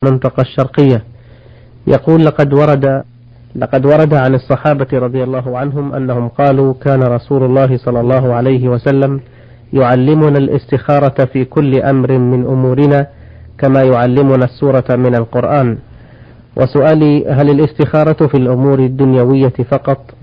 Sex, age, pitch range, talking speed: male, 40-59, 125-140 Hz, 120 wpm